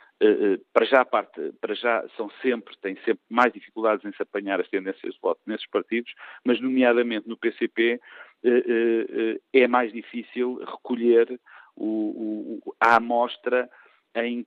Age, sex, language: 50-69, male, Portuguese